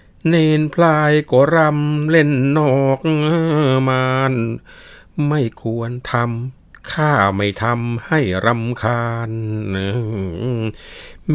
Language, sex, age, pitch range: Thai, male, 60-79, 90-125 Hz